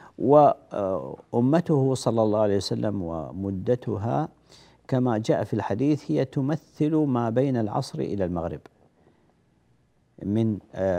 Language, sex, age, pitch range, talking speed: Arabic, male, 50-69, 90-125 Hz, 100 wpm